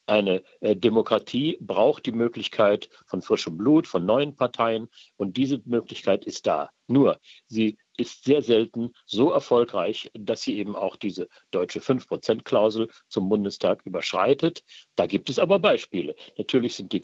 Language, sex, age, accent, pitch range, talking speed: German, male, 50-69, German, 110-140 Hz, 145 wpm